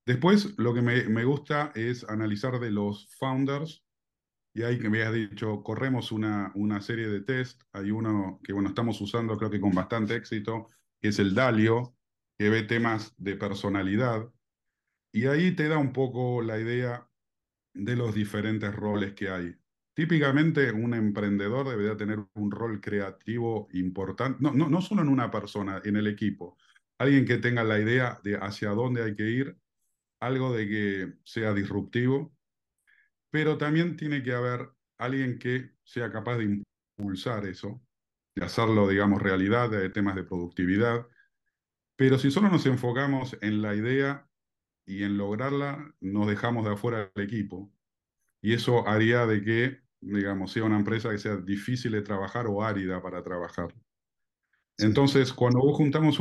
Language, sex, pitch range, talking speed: English, male, 105-125 Hz, 160 wpm